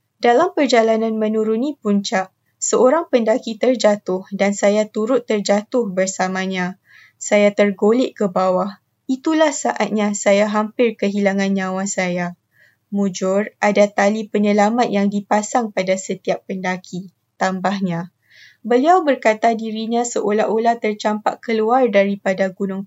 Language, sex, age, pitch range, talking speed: Malay, female, 20-39, 195-225 Hz, 110 wpm